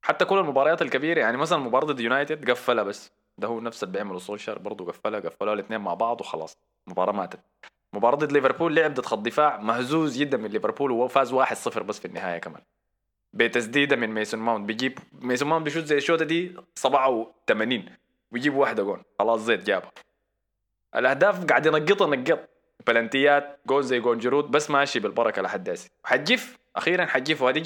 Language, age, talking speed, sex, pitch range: Arabic, 20-39, 165 wpm, male, 115-160 Hz